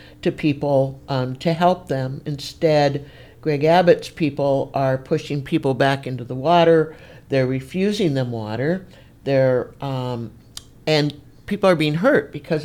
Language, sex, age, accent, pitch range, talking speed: English, male, 60-79, American, 125-155 Hz, 140 wpm